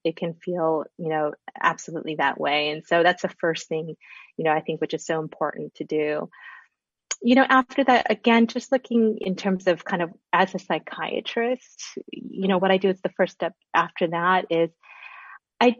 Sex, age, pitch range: female, 30-49, 160-200 Hz